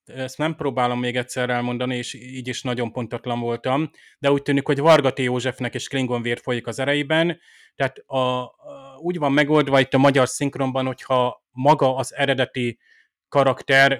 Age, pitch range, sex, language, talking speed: 30-49, 125-140 Hz, male, Hungarian, 165 wpm